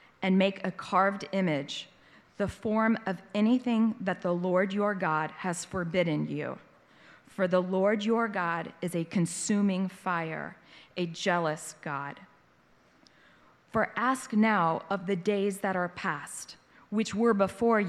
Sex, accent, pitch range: female, American, 185-230 Hz